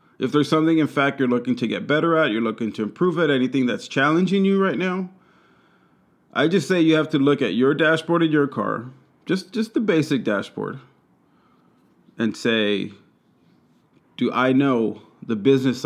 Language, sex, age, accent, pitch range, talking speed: English, male, 30-49, American, 115-160 Hz, 180 wpm